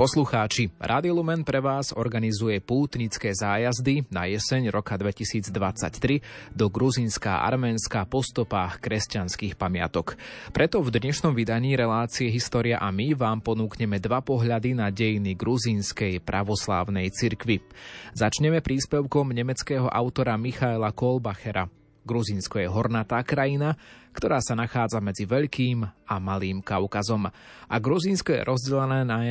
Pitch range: 100-125 Hz